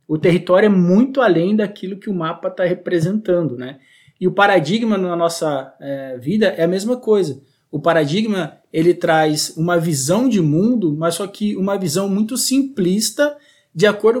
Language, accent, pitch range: Portuguese, Brazilian, 155-210 Hz